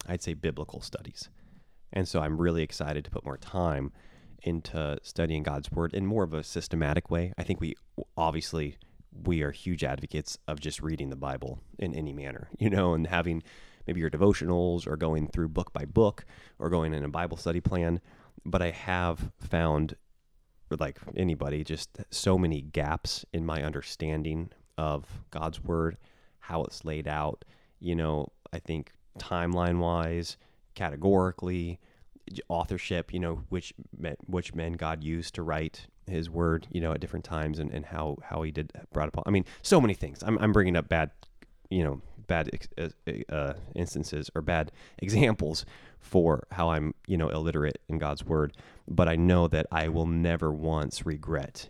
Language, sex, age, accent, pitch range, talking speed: English, male, 30-49, American, 75-90 Hz, 170 wpm